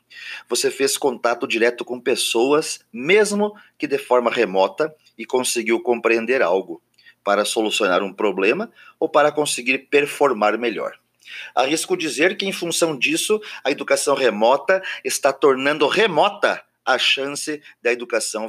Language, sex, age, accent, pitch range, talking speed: Portuguese, male, 40-59, Brazilian, 115-195 Hz, 130 wpm